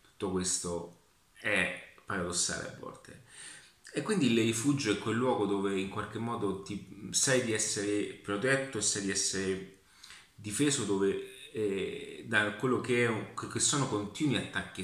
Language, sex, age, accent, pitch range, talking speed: Italian, male, 30-49, native, 95-120 Hz, 140 wpm